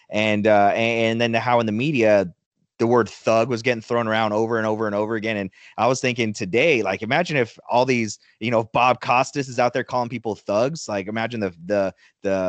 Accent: American